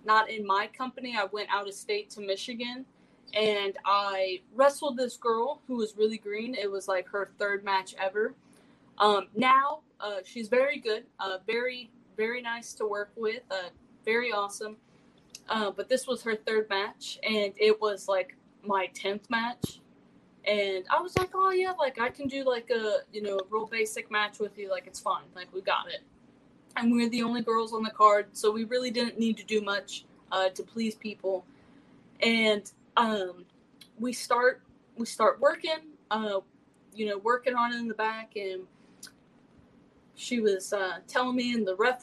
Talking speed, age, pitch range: 185 wpm, 20-39, 205-245 Hz